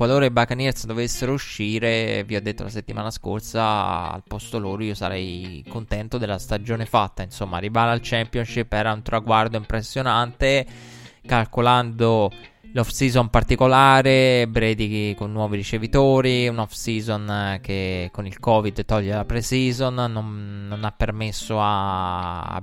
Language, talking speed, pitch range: Italian, 135 wpm, 100-115 Hz